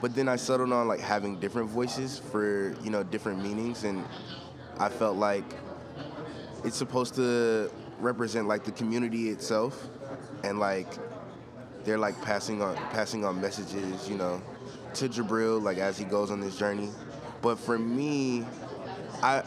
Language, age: English, 20-39